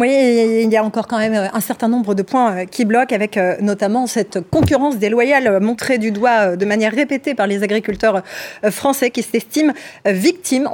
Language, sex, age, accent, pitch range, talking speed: French, female, 20-39, French, 185-250 Hz, 175 wpm